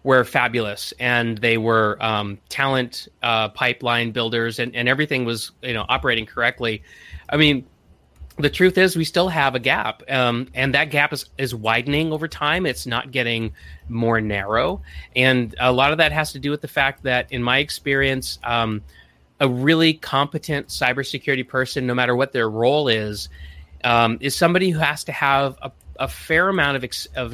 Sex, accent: male, American